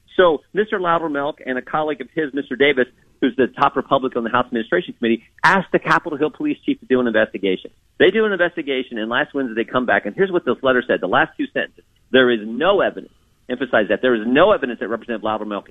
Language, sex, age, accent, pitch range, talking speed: English, male, 40-59, American, 125-200 Hz, 240 wpm